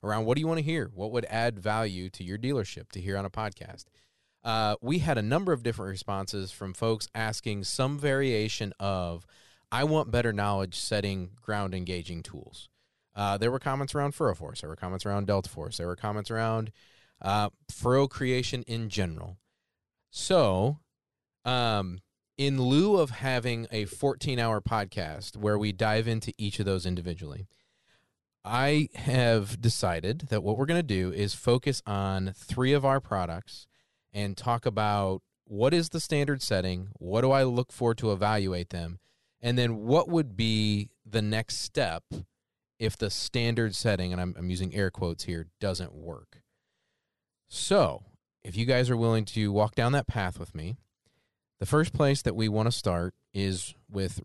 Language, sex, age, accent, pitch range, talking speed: English, male, 30-49, American, 95-125 Hz, 175 wpm